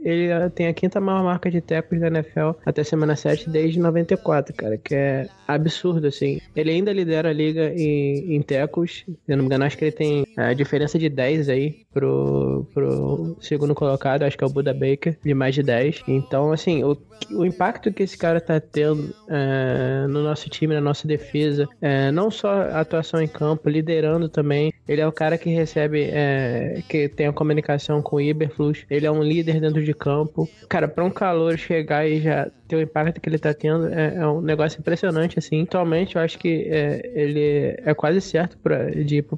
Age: 20-39